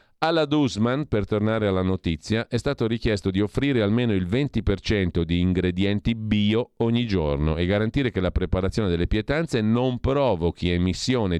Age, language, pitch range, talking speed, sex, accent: 40-59, Italian, 90-130 Hz, 155 wpm, male, native